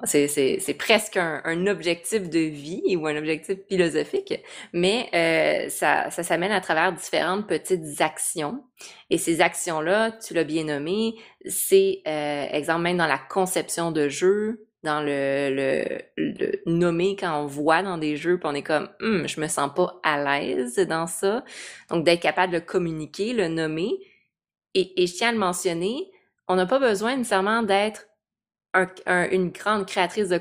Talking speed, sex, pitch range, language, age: 180 wpm, female, 155-190 Hz, French, 20-39